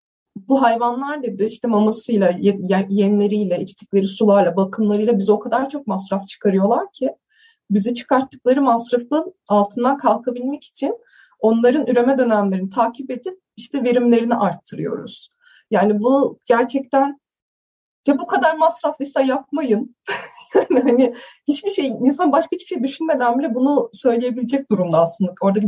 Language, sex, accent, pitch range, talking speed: Turkish, female, native, 210-280 Hz, 120 wpm